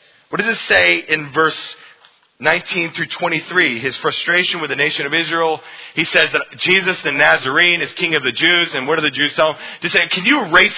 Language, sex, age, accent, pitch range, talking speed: English, male, 30-49, American, 125-180 Hz, 215 wpm